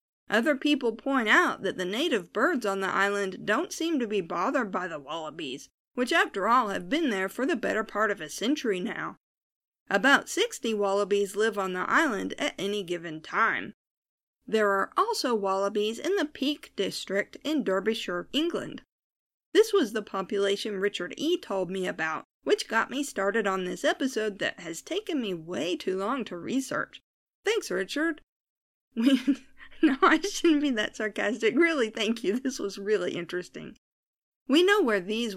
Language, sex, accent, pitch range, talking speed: English, female, American, 195-305 Hz, 170 wpm